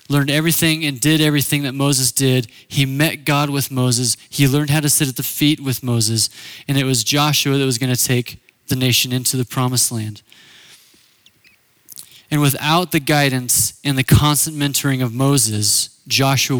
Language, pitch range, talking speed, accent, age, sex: English, 130-165 Hz, 175 wpm, American, 20-39, male